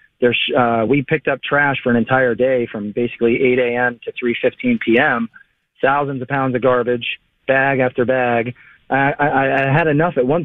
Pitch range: 120-140 Hz